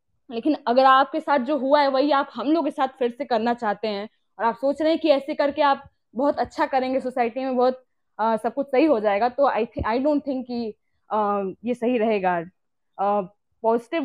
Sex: female